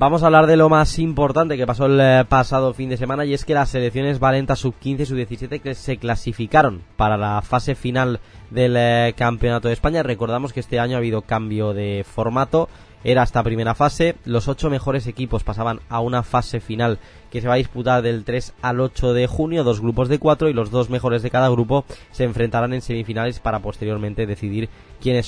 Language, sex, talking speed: Spanish, male, 200 wpm